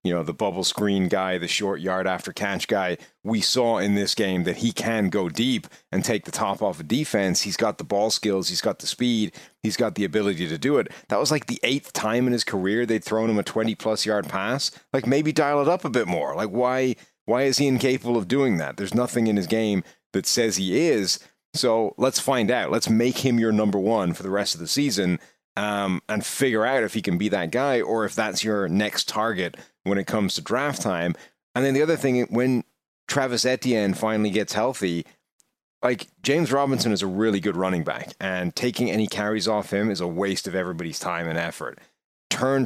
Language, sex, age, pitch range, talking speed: English, male, 30-49, 100-125 Hz, 225 wpm